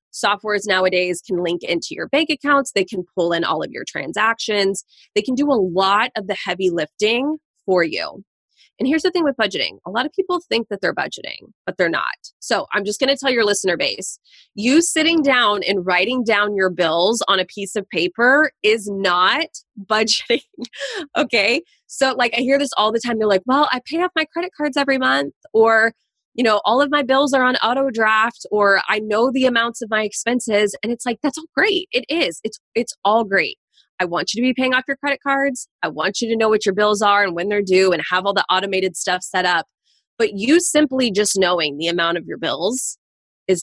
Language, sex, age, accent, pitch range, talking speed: English, female, 20-39, American, 195-275 Hz, 225 wpm